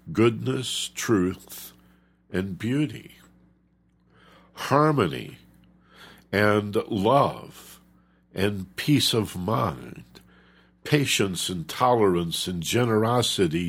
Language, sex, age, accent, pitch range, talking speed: English, male, 60-79, American, 65-105 Hz, 70 wpm